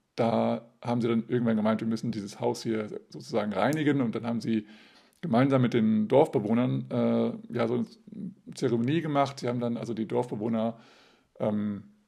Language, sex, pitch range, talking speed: German, male, 110-135 Hz, 165 wpm